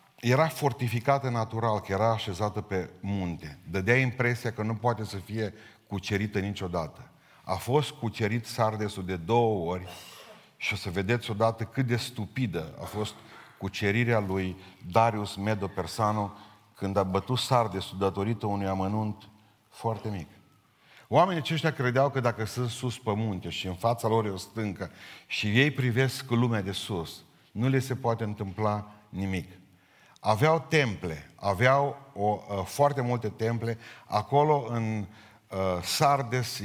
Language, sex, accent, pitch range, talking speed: Romanian, male, native, 100-120 Hz, 140 wpm